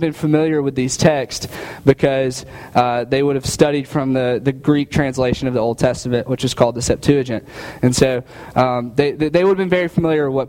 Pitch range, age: 125-150 Hz, 20-39